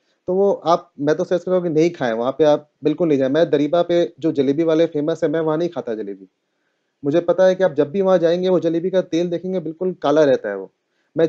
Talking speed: 245 wpm